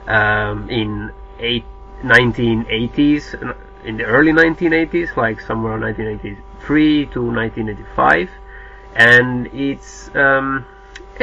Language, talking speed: English, 110 wpm